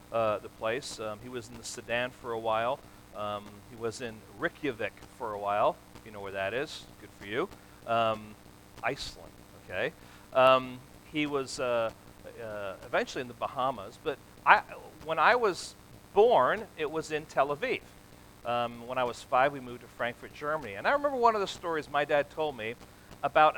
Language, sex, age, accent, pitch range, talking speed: English, male, 40-59, American, 120-165 Hz, 185 wpm